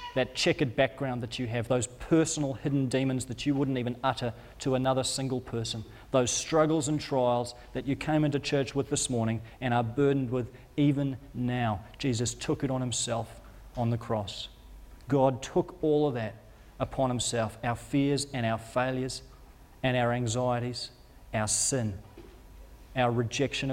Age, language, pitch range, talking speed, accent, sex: 40-59, English, 120-155 Hz, 160 wpm, Australian, male